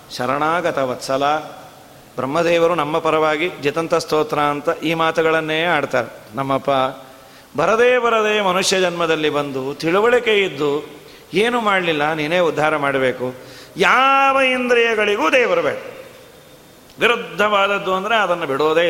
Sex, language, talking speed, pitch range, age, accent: male, Kannada, 100 wpm, 155-240 Hz, 40-59, native